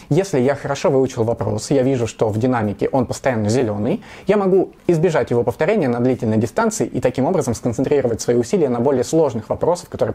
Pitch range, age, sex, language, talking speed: 115-135 Hz, 20-39, male, Russian, 190 wpm